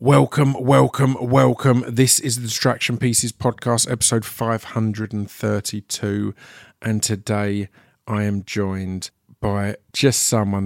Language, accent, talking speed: English, British, 105 wpm